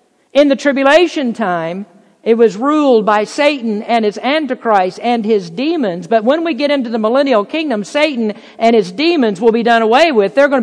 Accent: American